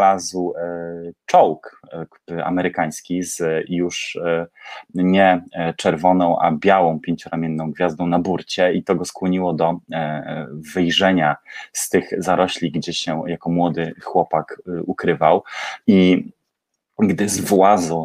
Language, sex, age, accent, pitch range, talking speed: Polish, male, 20-39, native, 80-90 Hz, 105 wpm